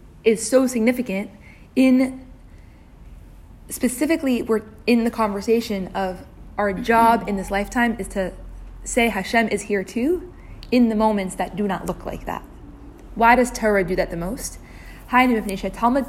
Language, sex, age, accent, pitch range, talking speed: English, female, 20-39, American, 195-235 Hz, 145 wpm